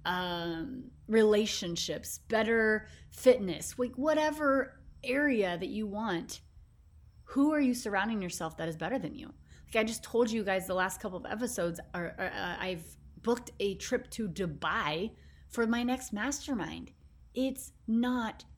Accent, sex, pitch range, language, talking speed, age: American, female, 175-230 Hz, English, 150 wpm, 30-49